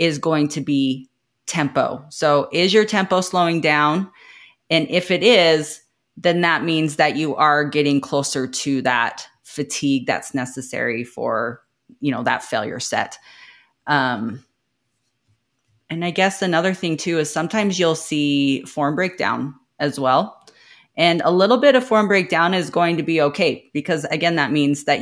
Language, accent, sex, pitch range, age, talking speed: English, American, female, 140-170 Hz, 30-49, 160 wpm